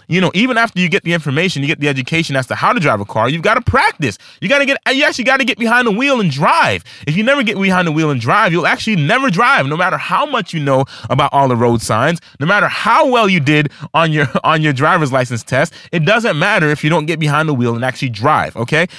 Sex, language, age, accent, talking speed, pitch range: male, English, 30-49, American, 280 wpm, 145-210 Hz